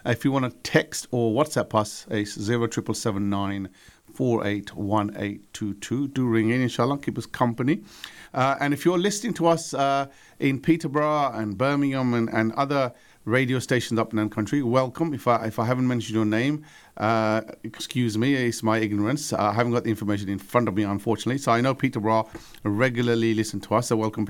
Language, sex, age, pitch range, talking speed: English, male, 50-69, 105-130 Hz, 200 wpm